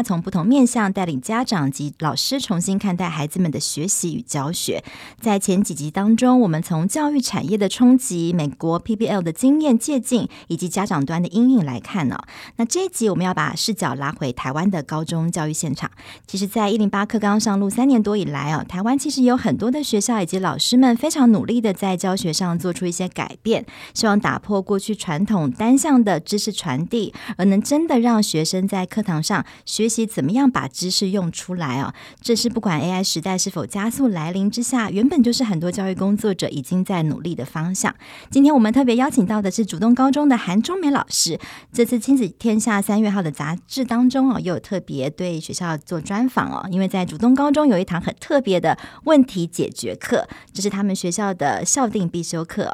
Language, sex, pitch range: Chinese, male, 170-235 Hz